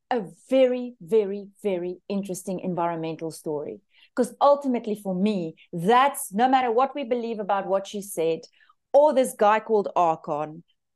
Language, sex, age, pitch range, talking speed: English, female, 30-49, 190-250 Hz, 140 wpm